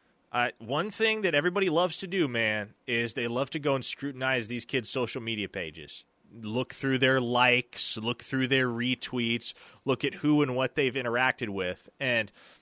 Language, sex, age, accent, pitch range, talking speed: English, male, 30-49, American, 115-145 Hz, 180 wpm